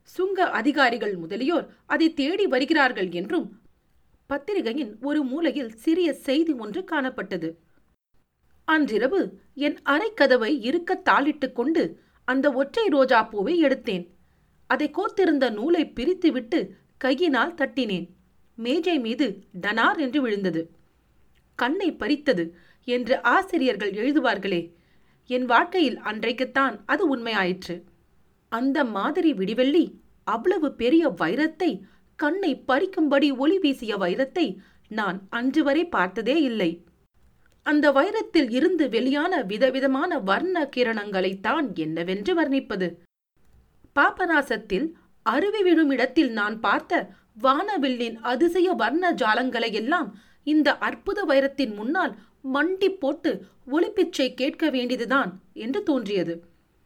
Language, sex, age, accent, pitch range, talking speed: Tamil, female, 40-59, native, 215-315 Hz, 95 wpm